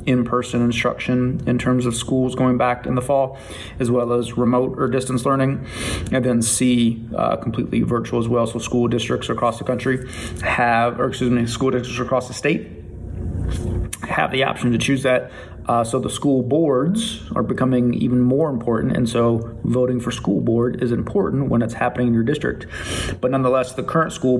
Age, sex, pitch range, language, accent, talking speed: 30-49, male, 115-135 Hz, English, American, 185 wpm